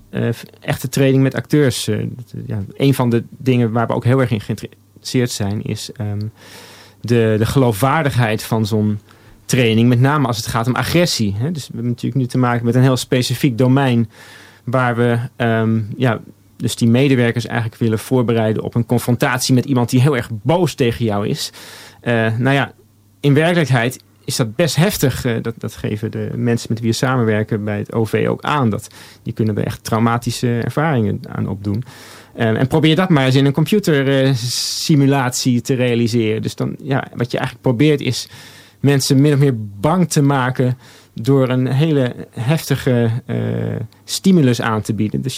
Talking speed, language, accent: 180 wpm, Dutch, Dutch